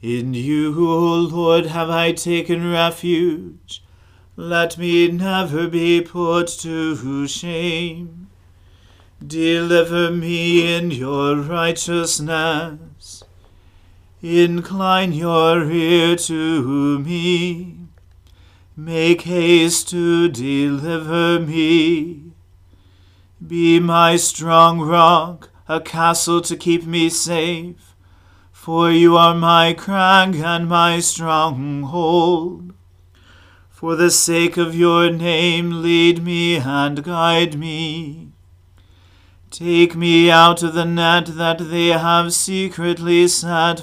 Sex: male